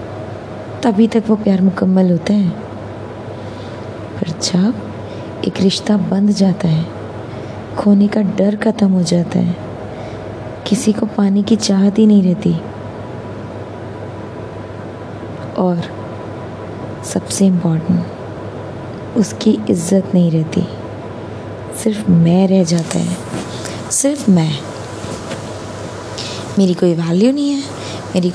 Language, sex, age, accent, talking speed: Hindi, female, 20-39, native, 100 wpm